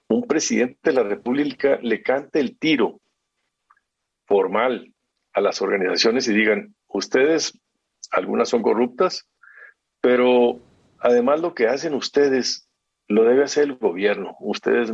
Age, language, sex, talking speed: 50-69, Spanish, male, 125 wpm